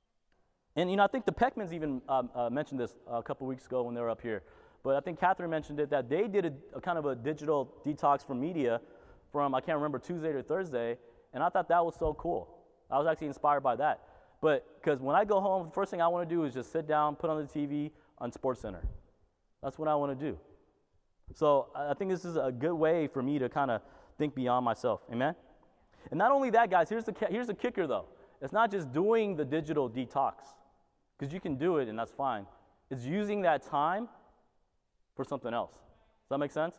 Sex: male